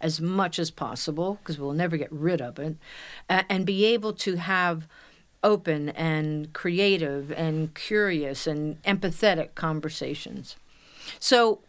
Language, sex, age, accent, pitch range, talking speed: English, female, 50-69, American, 165-225 Hz, 130 wpm